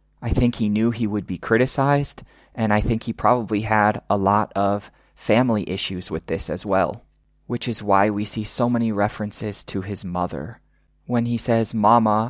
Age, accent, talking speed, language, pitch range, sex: 20-39, American, 185 wpm, English, 95-120 Hz, male